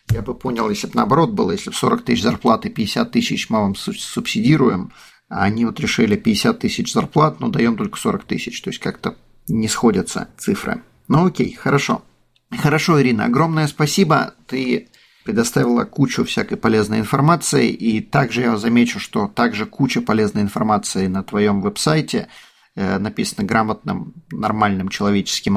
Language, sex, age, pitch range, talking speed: Russian, male, 40-59, 105-155 Hz, 150 wpm